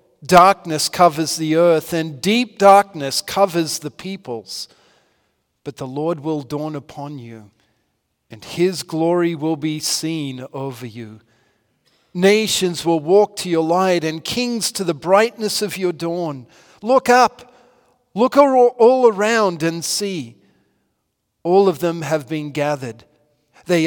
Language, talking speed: English, 135 wpm